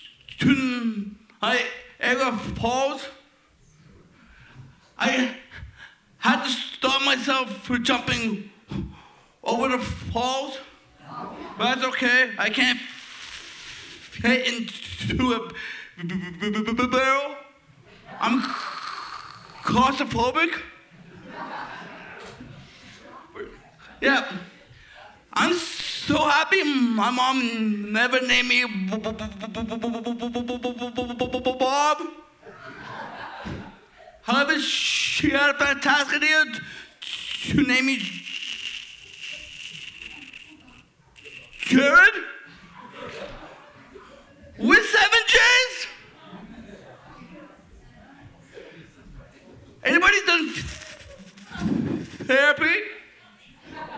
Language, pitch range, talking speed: English, 240-295 Hz, 55 wpm